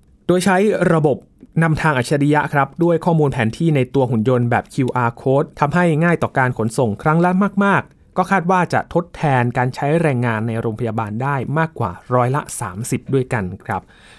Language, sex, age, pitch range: Thai, male, 20-39, 115-150 Hz